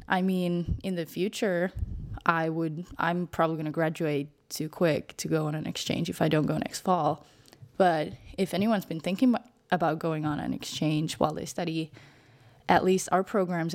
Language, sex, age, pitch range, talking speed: English, female, 10-29, 155-185 Hz, 190 wpm